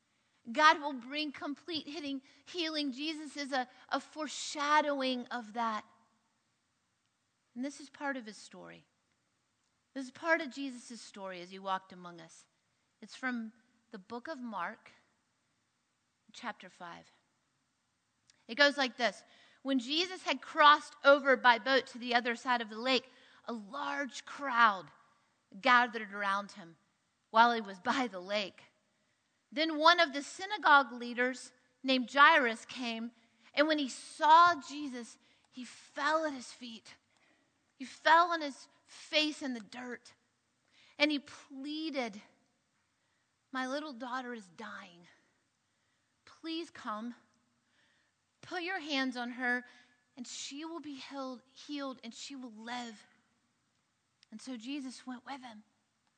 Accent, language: American, English